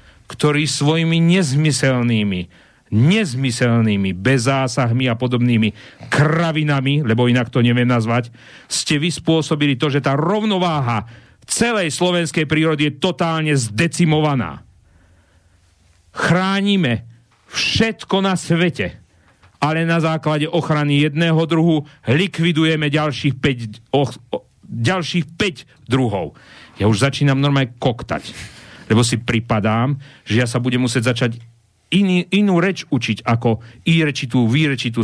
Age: 40-59